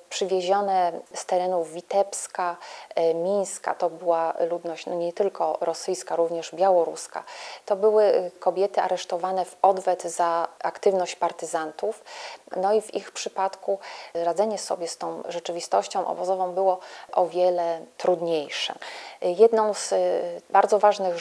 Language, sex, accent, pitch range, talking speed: Polish, female, native, 175-200 Hz, 115 wpm